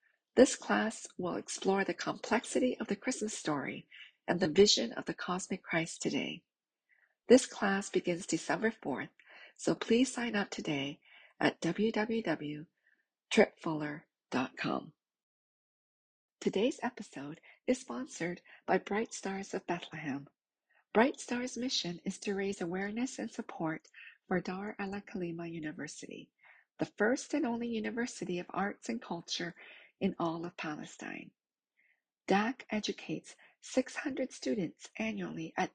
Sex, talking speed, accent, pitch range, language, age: female, 120 wpm, American, 175-240 Hz, English, 50-69